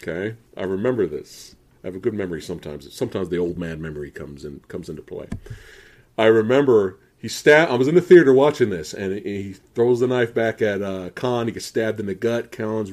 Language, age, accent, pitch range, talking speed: English, 40-59, American, 110-180 Hz, 225 wpm